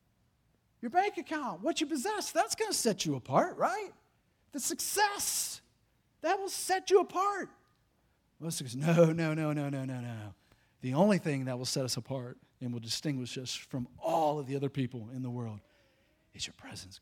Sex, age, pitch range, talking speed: male, 40-59, 115-155 Hz, 180 wpm